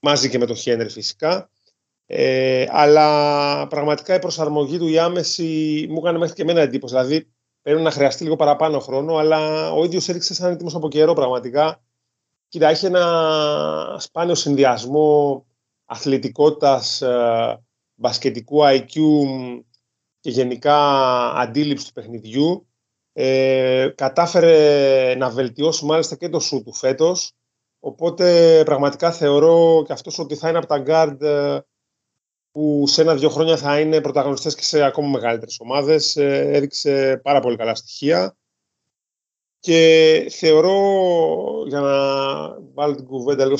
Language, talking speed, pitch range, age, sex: Greek, 130 wpm, 130-160 Hz, 30-49, male